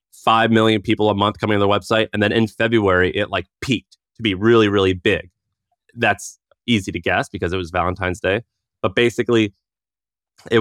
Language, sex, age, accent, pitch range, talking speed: English, male, 30-49, American, 100-120 Hz, 185 wpm